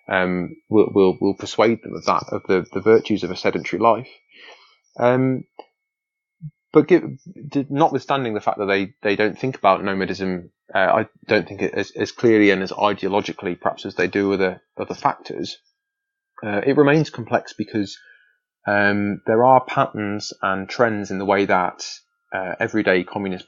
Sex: male